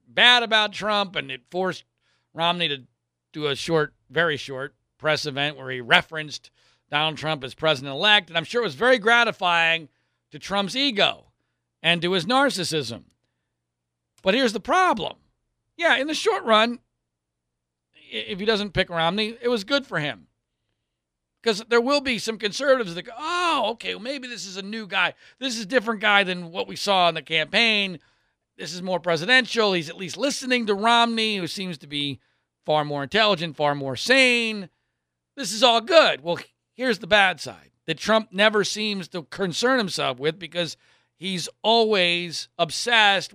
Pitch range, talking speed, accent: 150-230 Hz, 170 wpm, American